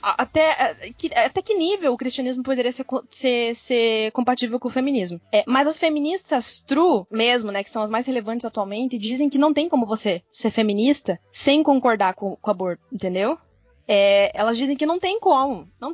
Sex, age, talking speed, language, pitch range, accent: female, 20-39, 185 wpm, Portuguese, 220-300 Hz, Brazilian